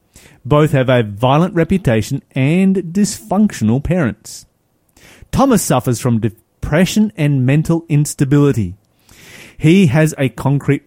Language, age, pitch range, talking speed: English, 30-49, 115-160 Hz, 105 wpm